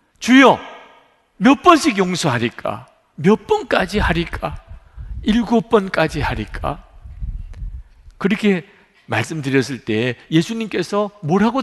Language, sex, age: Korean, male, 50-69